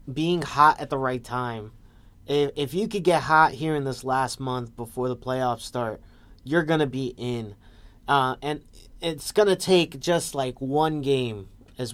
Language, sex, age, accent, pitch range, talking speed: English, male, 30-49, American, 120-155 Hz, 185 wpm